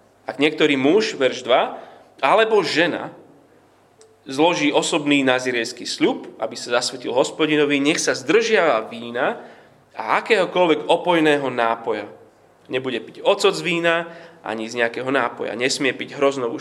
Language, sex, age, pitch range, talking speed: Slovak, male, 30-49, 135-170 Hz, 125 wpm